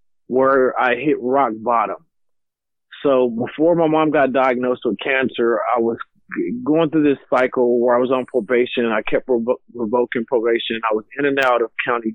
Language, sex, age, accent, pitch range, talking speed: English, male, 30-49, American, 115-130 Hz, 175 wpm